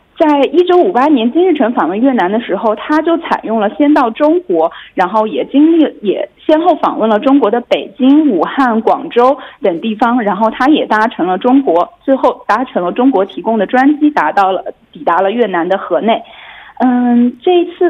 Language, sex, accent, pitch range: Korean, female, Chinese, 225-300 Hz